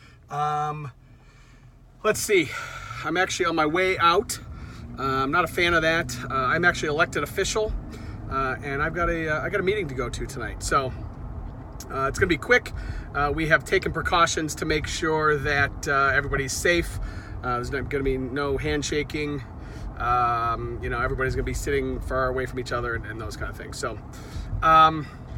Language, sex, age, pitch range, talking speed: English, male, 40-59, 125-165 Hz, 190 wpm